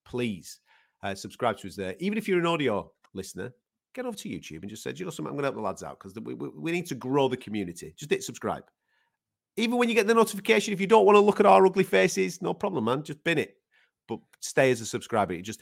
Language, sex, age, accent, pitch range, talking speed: English, male, 30-49, British, 95-160 Hz, 270 wpm